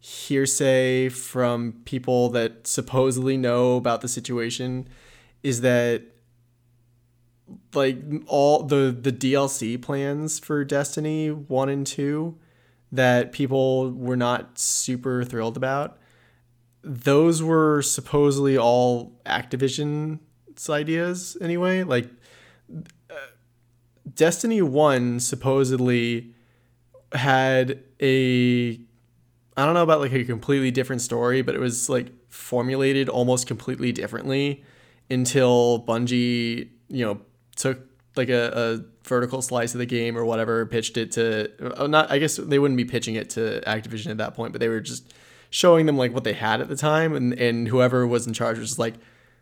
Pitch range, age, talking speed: 120-135 Hz, 20-39, 135 wpm